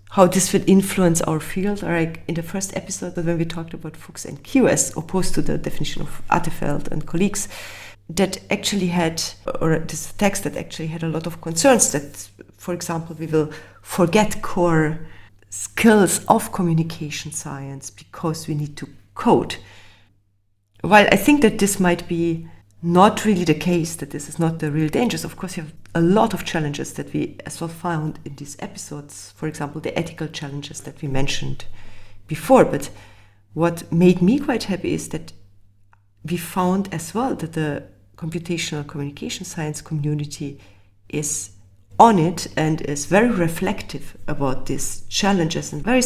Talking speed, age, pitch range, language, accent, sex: 170 wpm, 30-49, 140-180 Hz, English, German, female